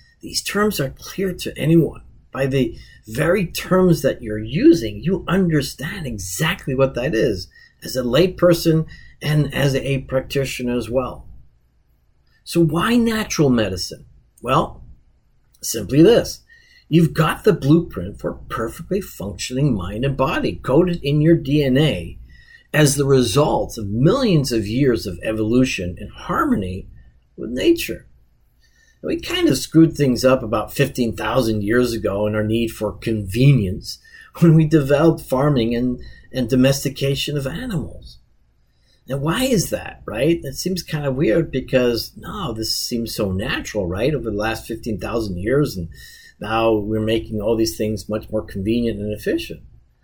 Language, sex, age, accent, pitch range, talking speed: English, male, 40-59, American, 110-155 Hz, 145 wpm